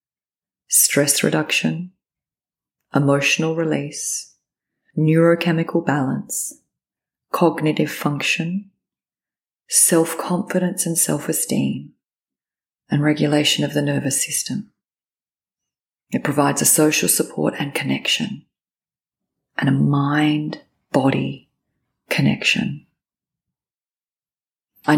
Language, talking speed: English, 70 wpm